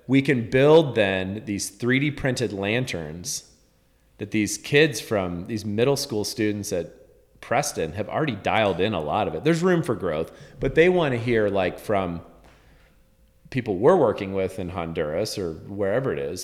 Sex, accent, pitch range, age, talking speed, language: male, American, 95-125 Hz, 30-49, 170 wpm, English